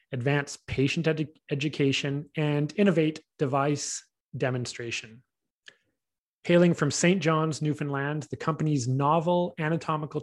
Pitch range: 130-160 Hz